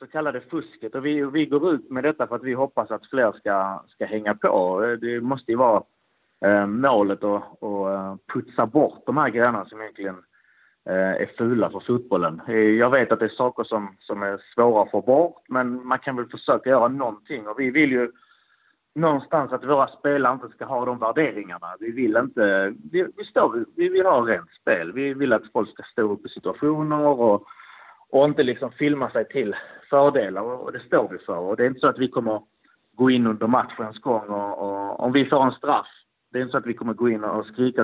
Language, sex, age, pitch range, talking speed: Swedish, male, 30-49, 110-145 Hz, 215 wpm